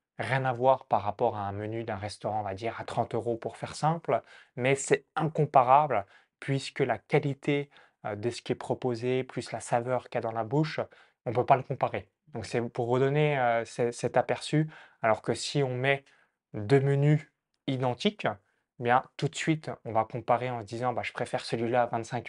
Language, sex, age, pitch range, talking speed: French, male, 20-39, 115-140 Hz, 200 wpm